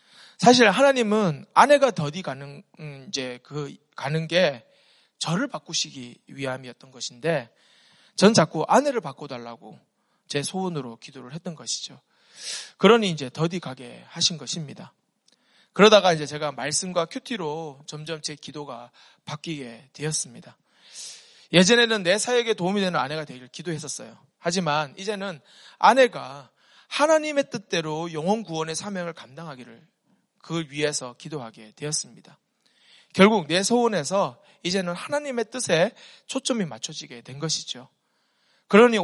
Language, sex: Korean, male